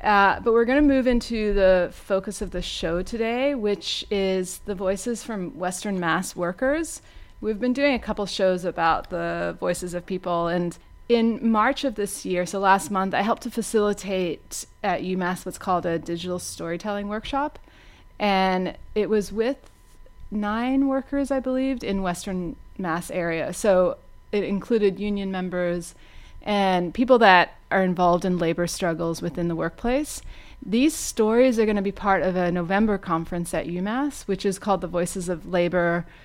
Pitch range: 180-220 Hz